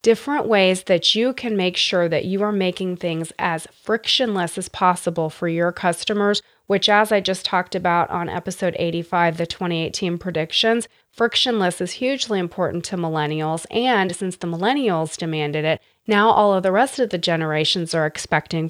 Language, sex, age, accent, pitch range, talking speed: English, female, 30-49, American, 170-220 Hz, 170 wpm